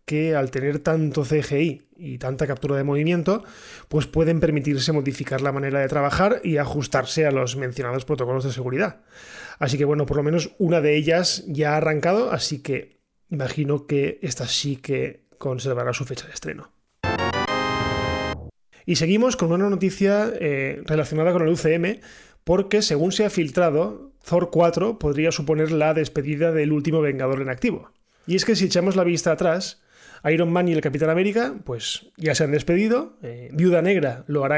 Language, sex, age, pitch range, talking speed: Spanish, male, 20-39, 145-175 Hz, 175 wpm